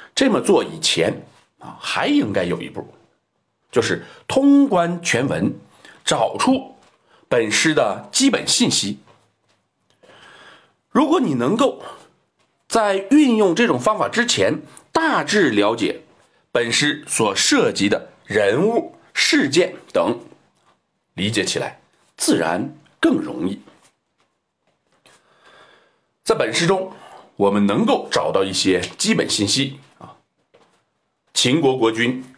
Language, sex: Chinese, male